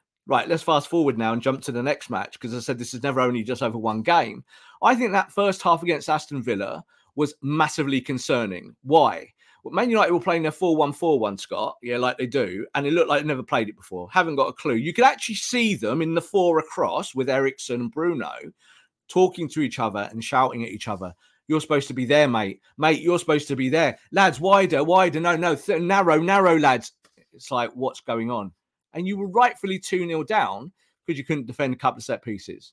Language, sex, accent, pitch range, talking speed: English, male, British, 120-165 Hz, 225 wpm